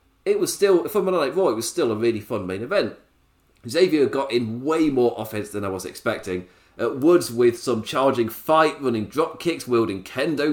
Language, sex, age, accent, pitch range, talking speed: English, male, 30-49, British, 105-145 Hz, 200 wpm